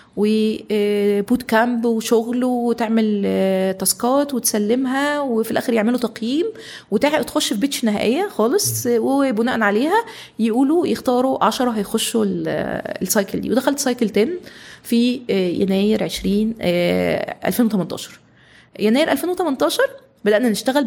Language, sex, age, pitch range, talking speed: Arabic, female, 20-39, 215-275 Hz, 100 wpm